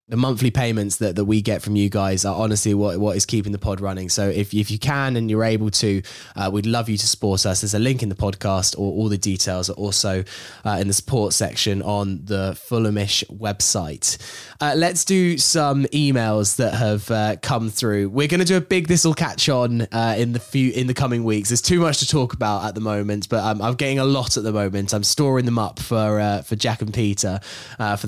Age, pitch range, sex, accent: 10-29, 105-145 Hz, male, British